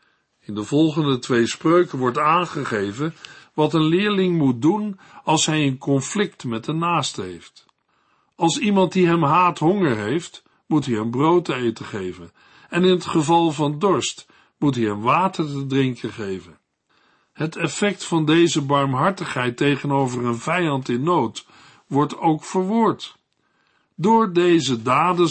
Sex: male